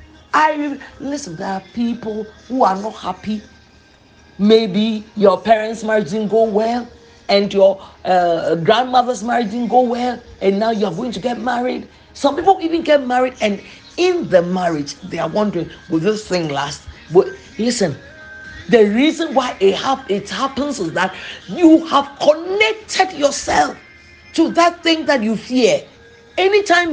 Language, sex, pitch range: English, male, 210-305 Hz